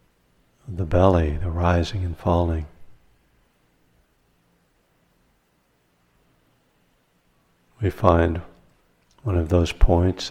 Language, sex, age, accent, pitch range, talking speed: English, male, 60-79, American, 80-95 Hz, 70 wpm